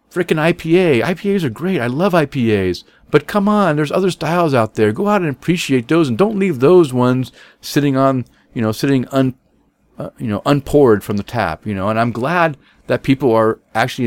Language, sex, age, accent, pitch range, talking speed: English, male, 40-59, American, 110-170 Hz, 205 wpm